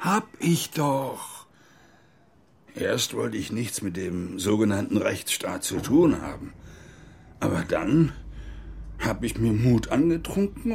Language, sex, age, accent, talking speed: German, male, 60-79, German, 115 wpm